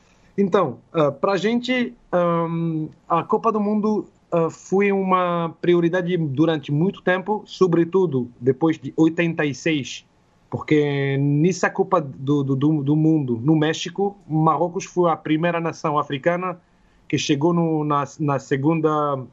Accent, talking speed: Brazilian, 130 wpm